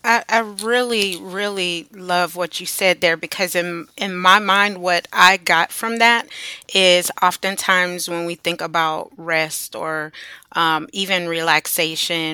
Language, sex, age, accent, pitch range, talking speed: English, female, 30-49, American, 165-195 Hz, 145 wpm